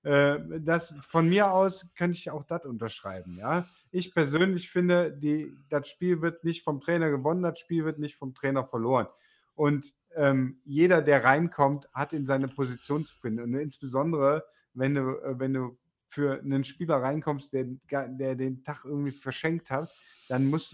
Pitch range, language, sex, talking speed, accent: 130-160 Hz, German, male, 170 wpm, German